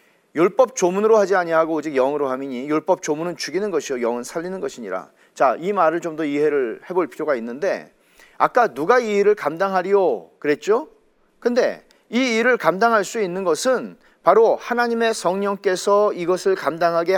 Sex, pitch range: male, 170-245 Hz